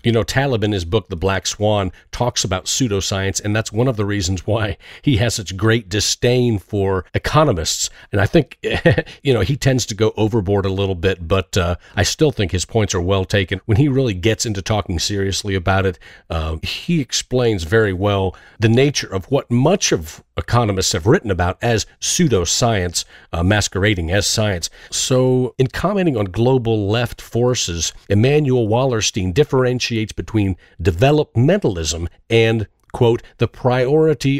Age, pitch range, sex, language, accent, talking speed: 40-59, 95-125 Hz, male, English, American, 165 wpm